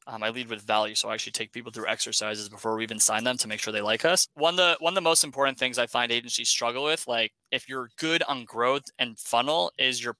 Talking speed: 265 wpm